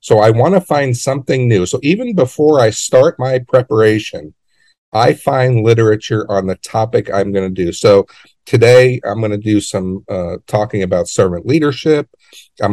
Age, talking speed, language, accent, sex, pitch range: 50-69, 175 wpm, English, American, male, 100-140 Hz